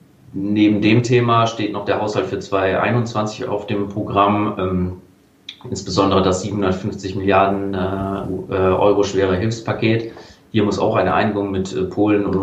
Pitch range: 95-115 Hz